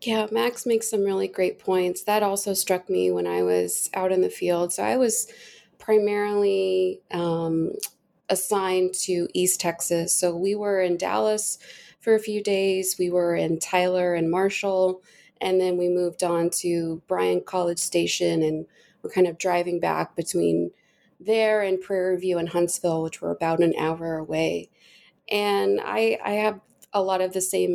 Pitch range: 170-205 Hz